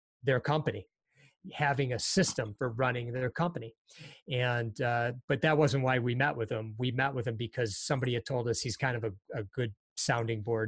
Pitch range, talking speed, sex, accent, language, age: 120-145 Hz, 200 wpm, male, American, English, 30-49